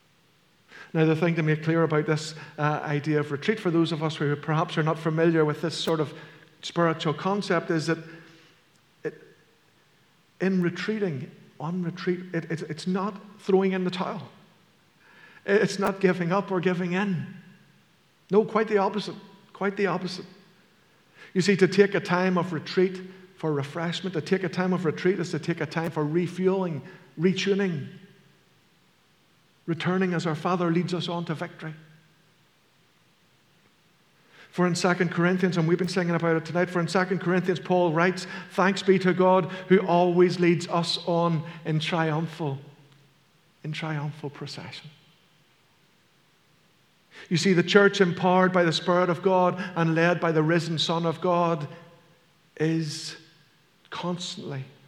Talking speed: 150 wpm